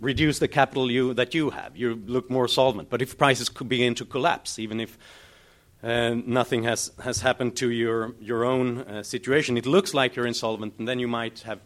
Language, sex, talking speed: English, male, 210 wpm